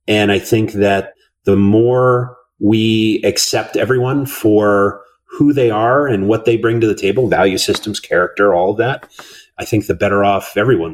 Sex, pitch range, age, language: male, 95-115 Hz, 30-49, English